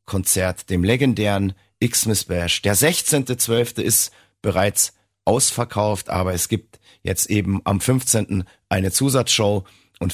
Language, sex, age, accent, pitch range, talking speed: German, male, 30-49, German, 95-120 Hz, 120 wpm